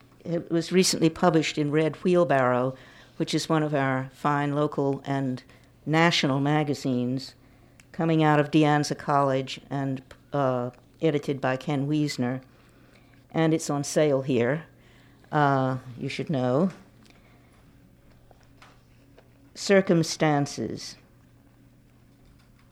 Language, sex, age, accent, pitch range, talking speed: English, female, 60-79, American, 130-170 Hz, 105 wpm